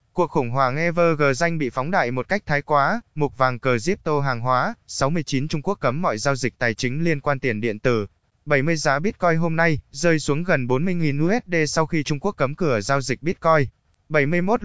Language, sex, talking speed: Vietnamese, male, 210 wpm